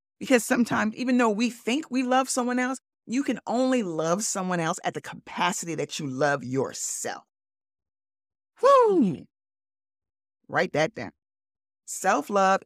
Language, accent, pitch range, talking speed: English, American, 150-235 Hz, 135 wpm